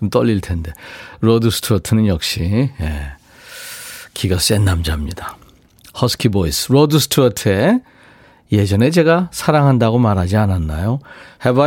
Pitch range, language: 95-150 Hz, Korean